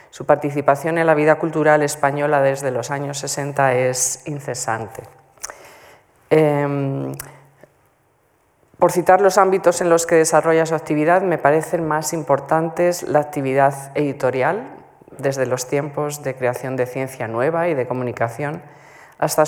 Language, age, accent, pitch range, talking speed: Spanish, 20-39, Spanish, 130-155 Hz, 130 wpm